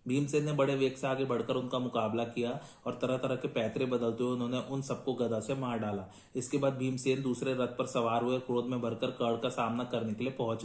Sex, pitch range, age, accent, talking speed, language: male, 120-130 Hz, 30-49, native, 235 wpm, Hindi